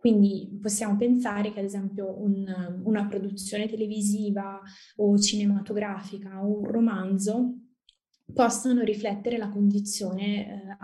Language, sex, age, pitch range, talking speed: Italian, female, 20-39, 195-215 Hz, 110 wpm